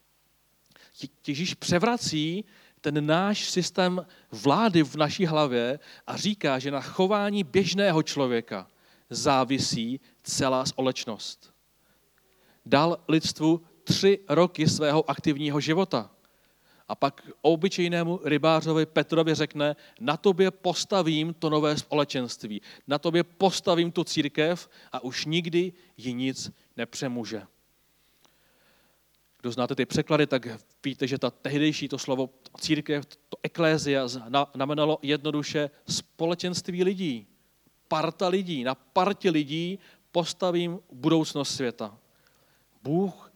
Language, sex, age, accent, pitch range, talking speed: Czech, male, 40-59, native, 130-175 Hz, 110 wpm